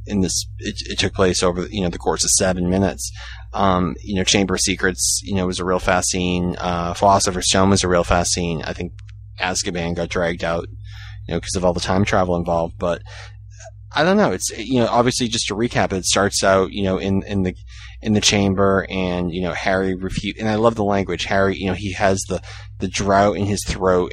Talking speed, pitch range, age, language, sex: 230 wpm, 95-105 Hz, 30-49, English, male